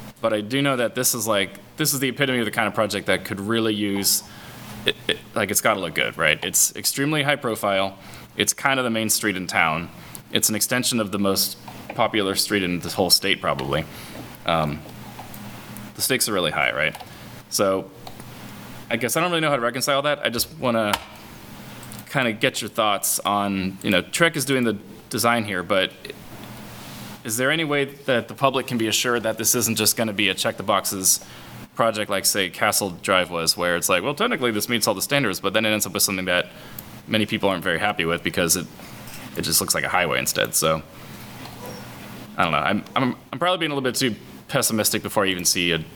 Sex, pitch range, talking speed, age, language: male, 95-125 Hz, 220 wpm, 20-39, English